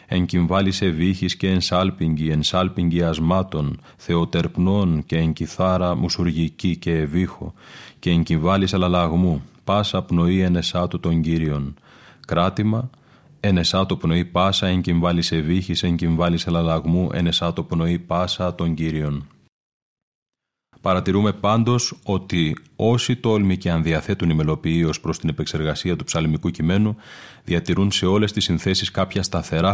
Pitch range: 85-95 Hz